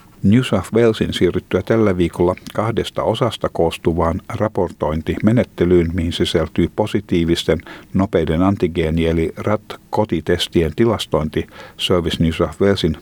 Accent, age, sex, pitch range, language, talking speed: native, 60-79, male, 85-110 Hz, Finnish, 100 wpm